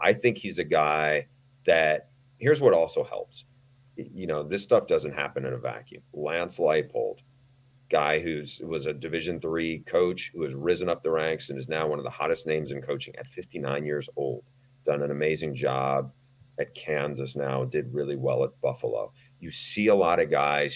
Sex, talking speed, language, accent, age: male, 195 wpm, English, American, 40-59